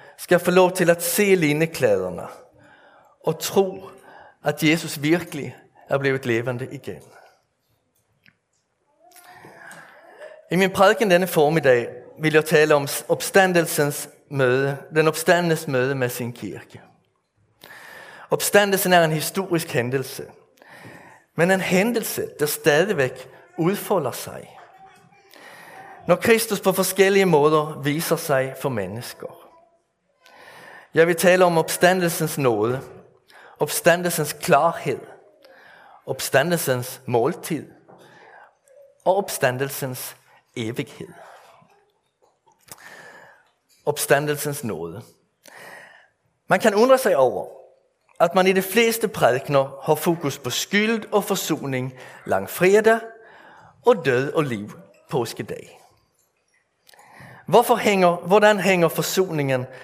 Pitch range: 145-195 Hz